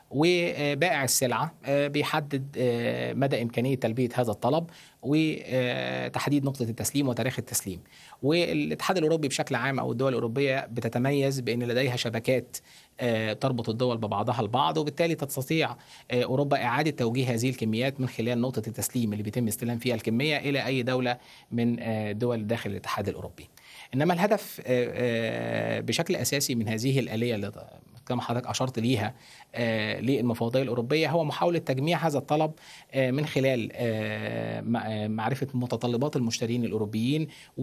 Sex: male